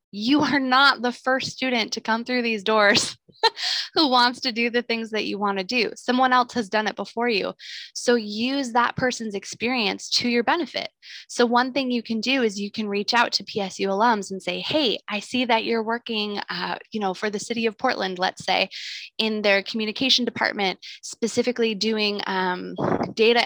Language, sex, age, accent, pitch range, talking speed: English, female, 20-39, American, 210-260 Hz, 195 wpm